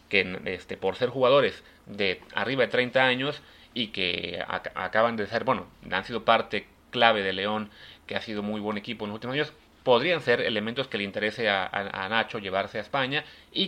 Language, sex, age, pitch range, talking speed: Spanish, male, 30-49, 100-120 Hz, 200 wpm